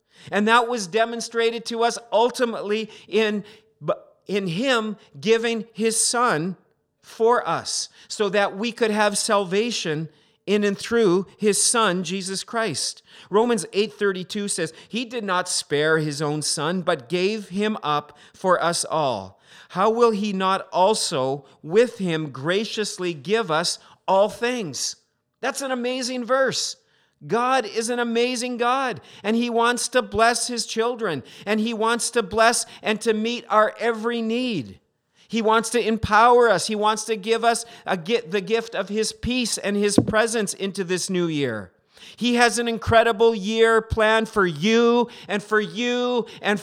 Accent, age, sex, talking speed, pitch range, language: American, 40-59, male, 150 wpm, 195-235 Hz, English